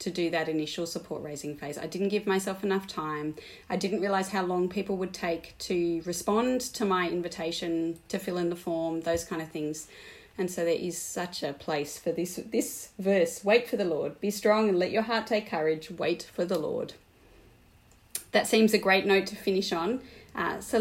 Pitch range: 165-200 Hz